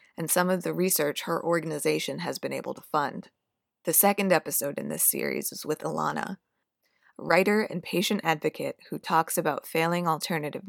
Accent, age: American, 20-39